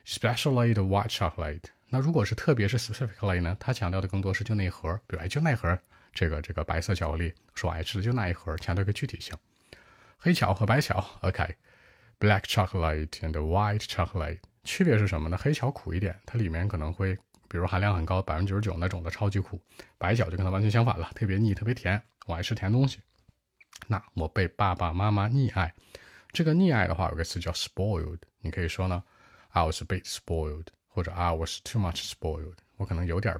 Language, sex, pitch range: Chinese, male, 85-110 Hz